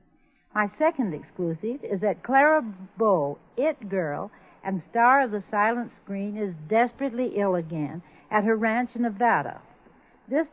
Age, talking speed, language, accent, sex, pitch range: 60-79, 140 wpm, English, American, female, 195-250 Hz